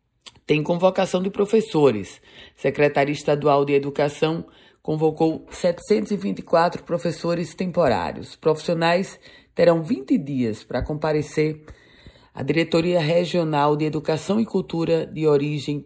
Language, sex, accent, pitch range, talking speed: Portuguese, female, Brazilian, 140-170 Hz, 100 wpm